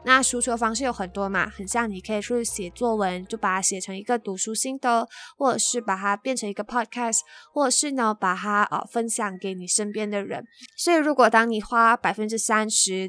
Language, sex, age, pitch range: Chinese, female, 20-39, 205-250 Hz